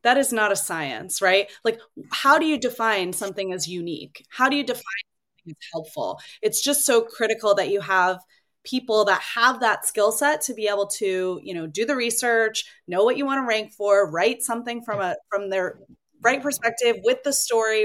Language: English